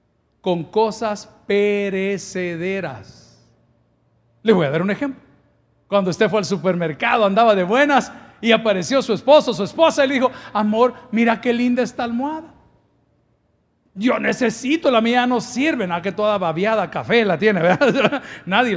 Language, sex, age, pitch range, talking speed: Spanish, male, 50-69, 180-225 Hz, 150 wpm